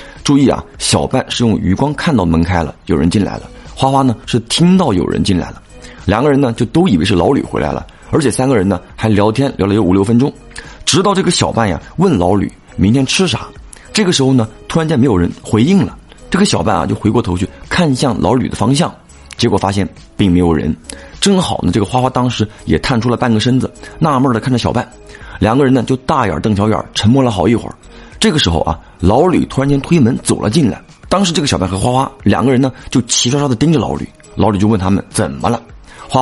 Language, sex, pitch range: Chinese, male, 95-135 Hz